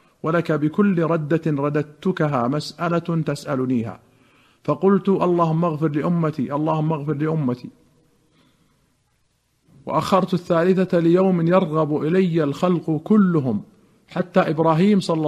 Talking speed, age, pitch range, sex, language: 90 wpm, 50-69, 145-170 Hz, male, Arabic